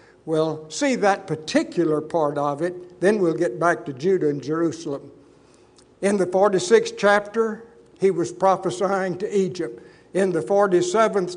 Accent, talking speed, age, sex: American, 140 wpm, 60-79, male